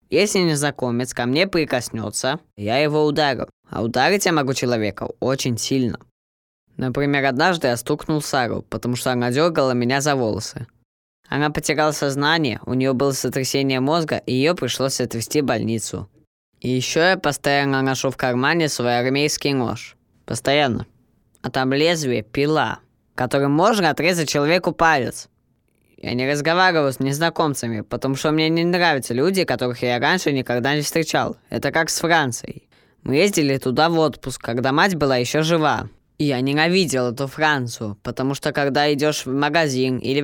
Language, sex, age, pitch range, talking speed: Russian, female, 20-39, 125-155 Hz, 155 wpm